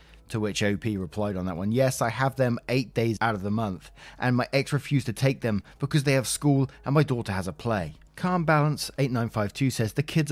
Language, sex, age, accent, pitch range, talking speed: English, male, 20-39, British, 105-140 Hz, 235 wpm